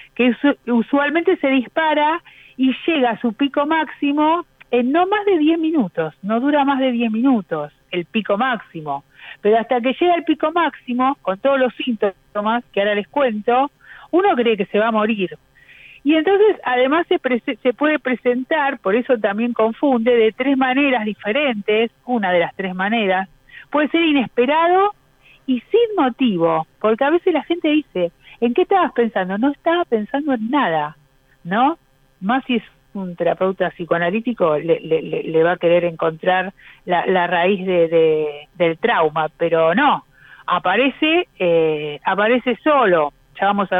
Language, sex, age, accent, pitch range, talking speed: Spanish, female, 50-69, Argentinian, 180-285 Hz, 160 wpm